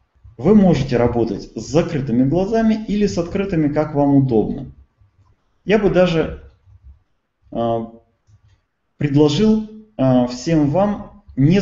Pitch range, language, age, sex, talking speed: 115-155 Hz, Russian, 20-39, male, 100 wpm